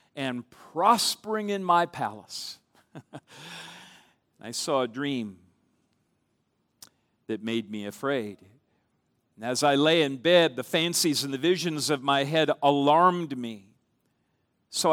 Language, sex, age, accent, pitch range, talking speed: English, male, 50-69, American, 135-175 Hz, 120 wpm